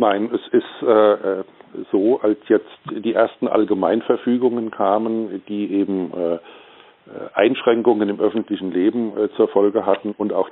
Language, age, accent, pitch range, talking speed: German, 50-69, German, 100-120 Hz, 135 wpm